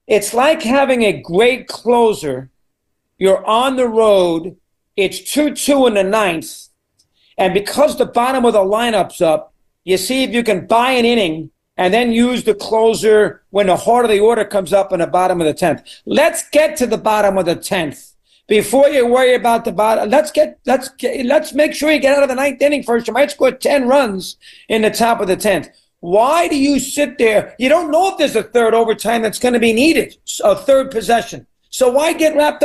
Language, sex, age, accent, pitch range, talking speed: English, male, 50-69, American, 200-265 Hz, 210 wpm